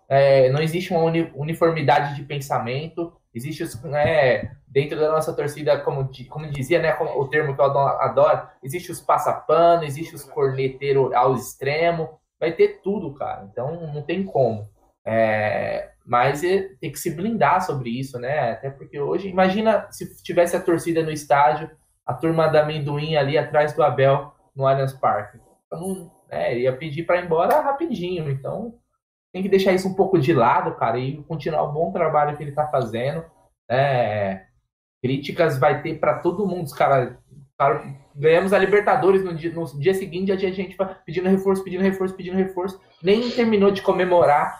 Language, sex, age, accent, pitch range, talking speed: Portuguese, male, 20-39, Brazilian, 140-185 Hz, 165 wpm